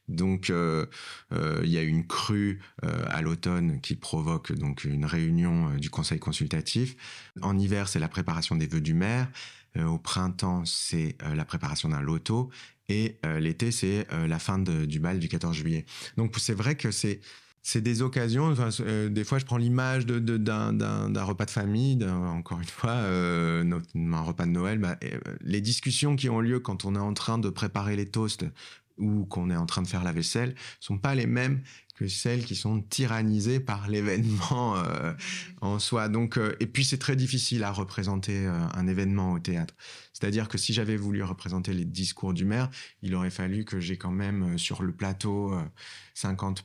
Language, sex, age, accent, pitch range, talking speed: French, male, 30-49, French, 90-120 Hz, 205 wpm